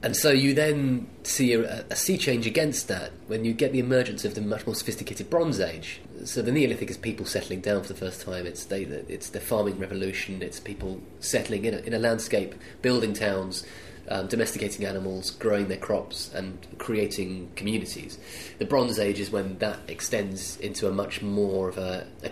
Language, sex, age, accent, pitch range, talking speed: English, male, 20-39, British, 95-115 Hz, 190 wpm